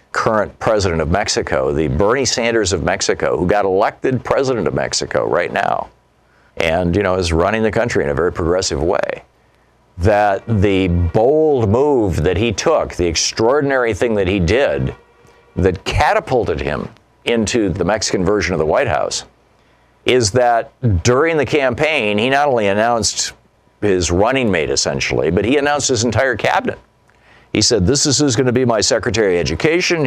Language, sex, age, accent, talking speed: English, male, 50-69, American, 165 wpm